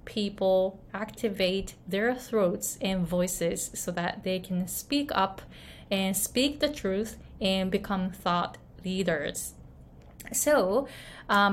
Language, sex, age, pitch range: Japanese, female, 20-39, 180-215 Hz